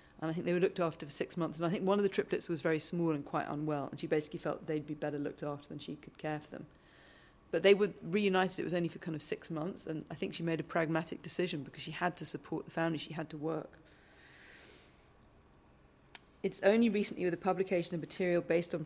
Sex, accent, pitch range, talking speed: female, British, 165-205 Hz, 255 wpm